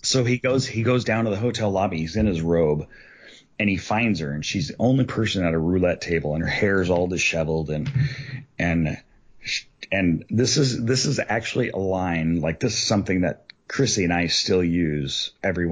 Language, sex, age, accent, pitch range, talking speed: English, male, 30-49, American, 85-125 Hz, 205 wpm